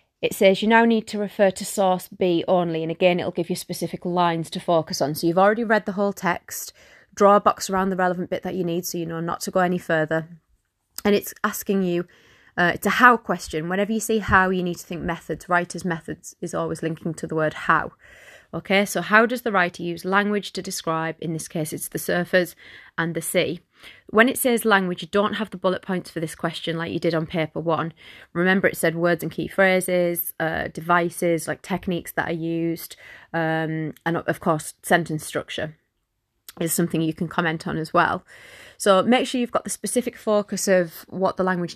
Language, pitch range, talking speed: English, 165-200 Hz, 215 wpm